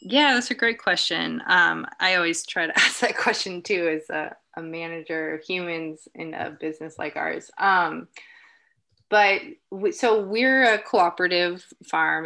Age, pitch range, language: 20-39, 160-200 Hz, English